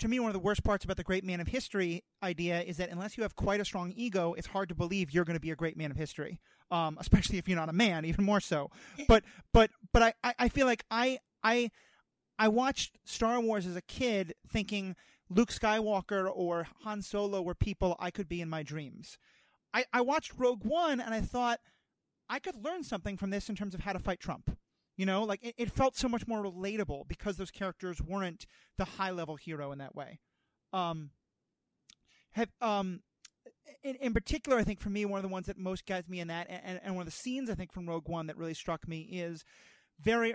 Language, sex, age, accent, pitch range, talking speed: English, male, 30-49, American, 175-225 Hz, 230 wpm